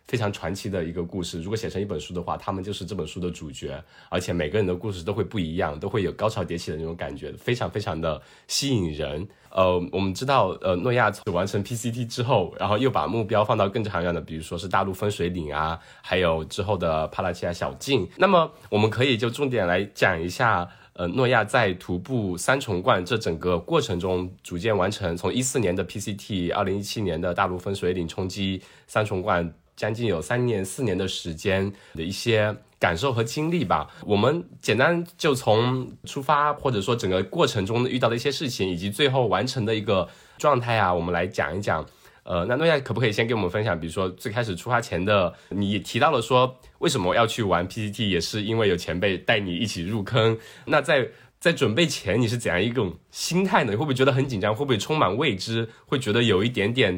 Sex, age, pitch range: male, 20-39, 90-120 Hz